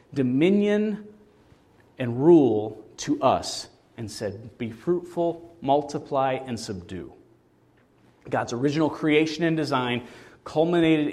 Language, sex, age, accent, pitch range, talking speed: English, male, 40-59, American, 130-170 Hz, 95 wpm